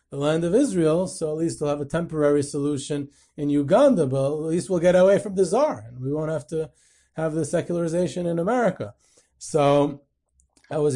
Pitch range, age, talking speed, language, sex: 140-165 Hz, 30-49, 195 wpm, English, male